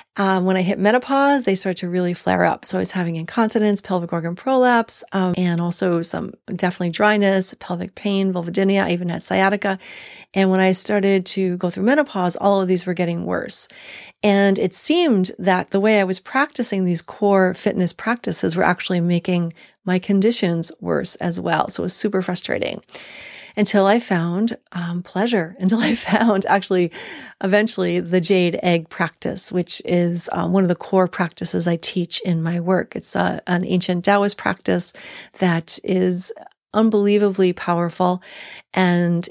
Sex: female